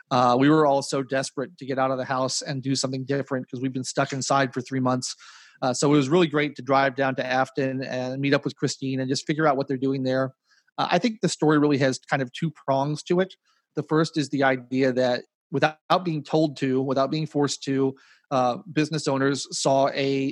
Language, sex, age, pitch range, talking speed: English, male, 30-49, 130-145 Hz, 235 wpm